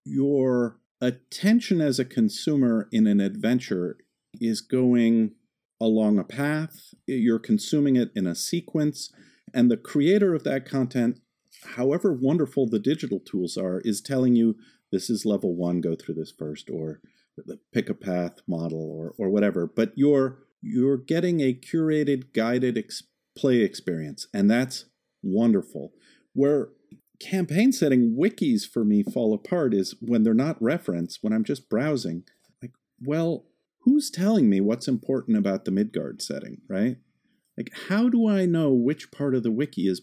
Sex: male